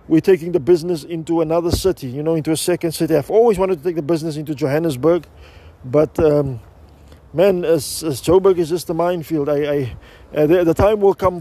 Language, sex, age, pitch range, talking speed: English, male, 20-39, 145-180 Hz, 210 wpm